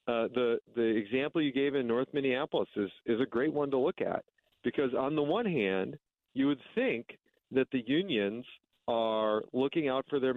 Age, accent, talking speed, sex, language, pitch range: 40-59, American, 190 wpm, male, English, 115-135 Hz